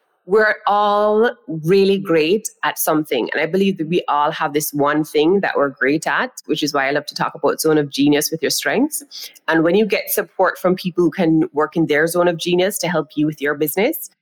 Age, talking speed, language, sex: 30-49, 230 wpm, English, female